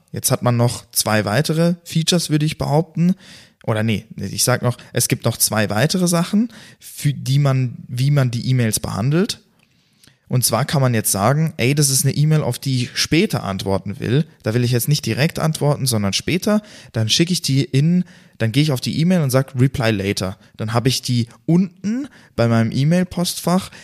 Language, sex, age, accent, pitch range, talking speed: German, male, 20-39, German, 115-160 Hz, 195 wpm